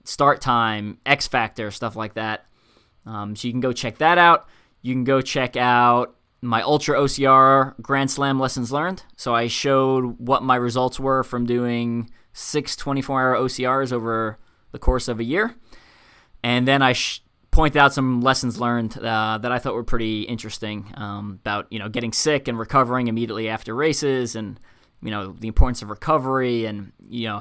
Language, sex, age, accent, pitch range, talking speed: English, male, 20-39, American, 115-140 Hz, 175 wpm